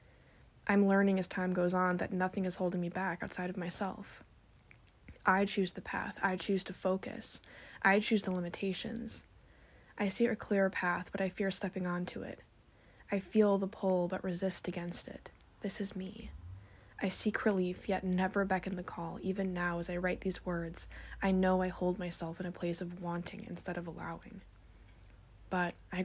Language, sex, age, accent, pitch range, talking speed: English, female, 20-39, American, 175-195 Hz, 180 wpm